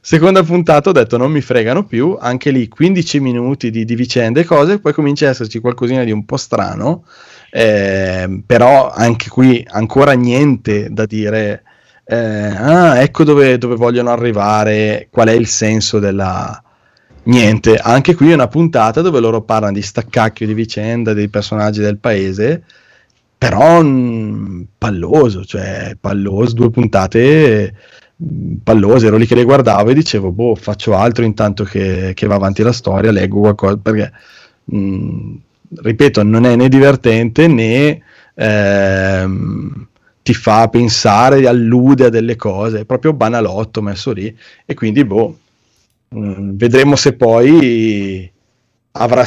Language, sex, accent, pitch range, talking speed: Italian, male, native, 105-125 Hz, 145 wpm